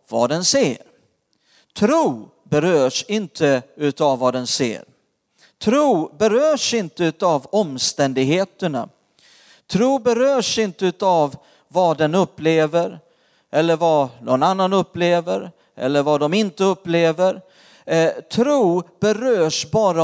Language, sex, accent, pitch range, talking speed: Swedish, male, native, 150-205 Hz, 105 wpm